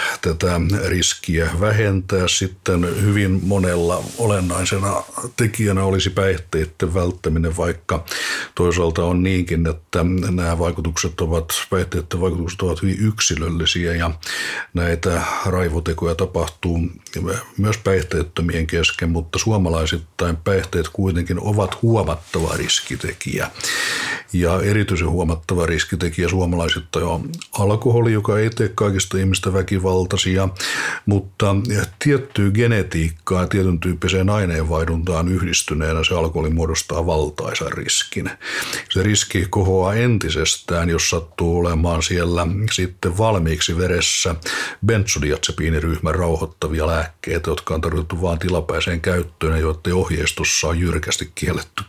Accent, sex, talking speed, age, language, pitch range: native, male, 100 wpm, 60-79, Finnish, 85-95 Hz